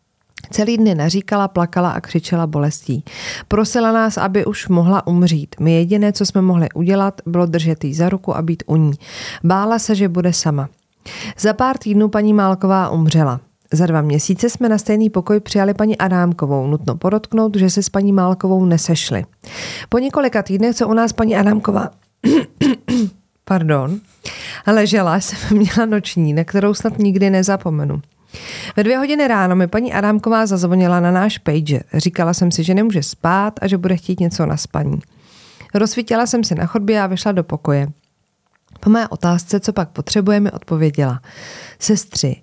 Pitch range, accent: 165-210 Hz, native